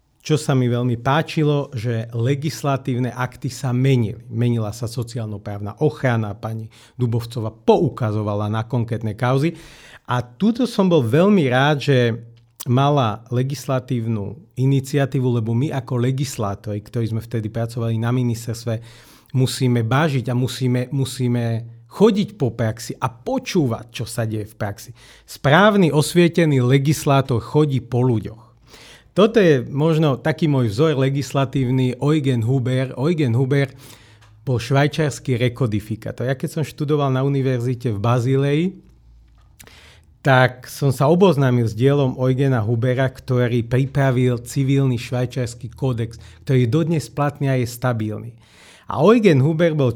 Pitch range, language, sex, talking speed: 115-140 Hz, Slovak, male, 130 wpm